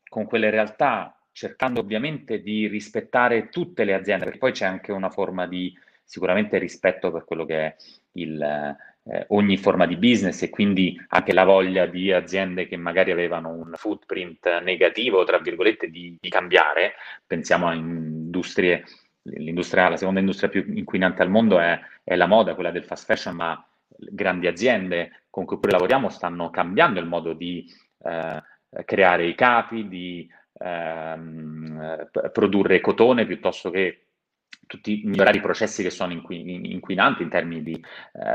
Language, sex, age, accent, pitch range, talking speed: Italian, male, 30-49, native, 85-105 Hz, 155 wpm